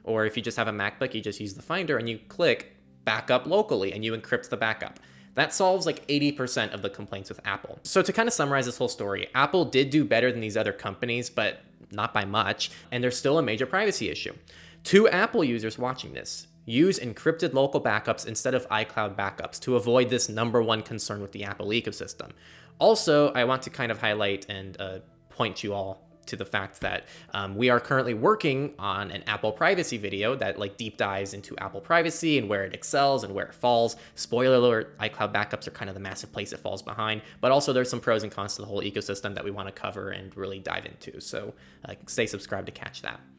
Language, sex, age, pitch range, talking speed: English, male, 20-39, 100-140 Hz, 225 wpm